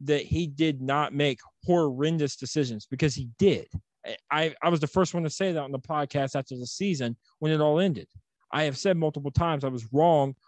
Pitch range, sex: 135-165 Hz, male